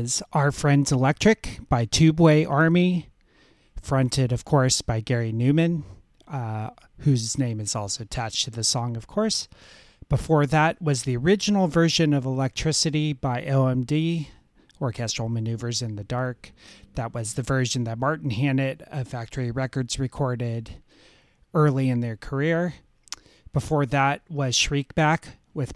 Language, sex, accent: English, male, American